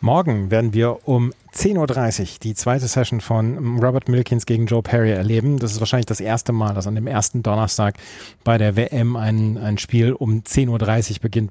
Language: German